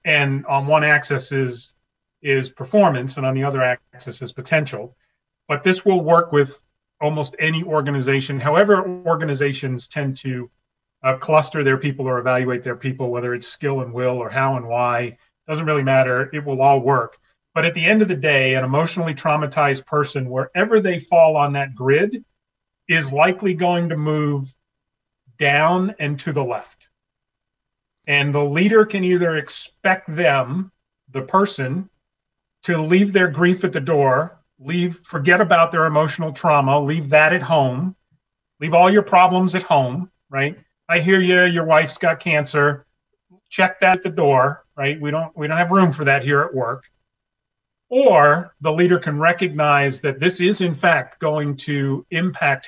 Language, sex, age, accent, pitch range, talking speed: English, male, 40-59, American, 135-170 Hz, 165 wpm